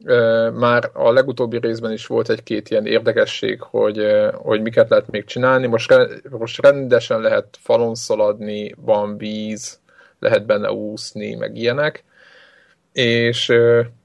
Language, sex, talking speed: Hungarian, male, 125 wpm